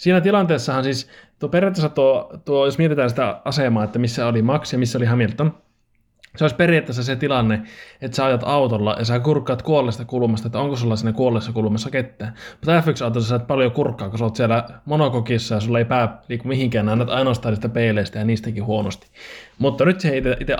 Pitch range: 115-150 Hz